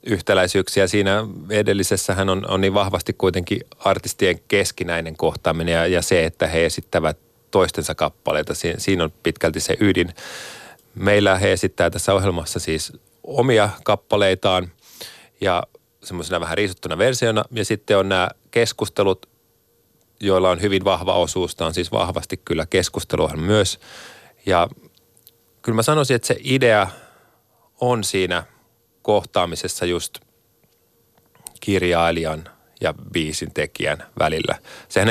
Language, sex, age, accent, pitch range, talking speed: Finnish, male, 30-49, native, 85-105 Hz, 125 wpm